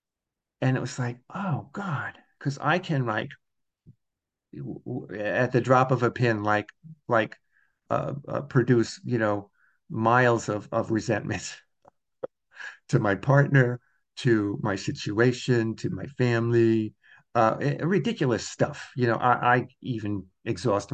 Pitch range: 115-135 Hz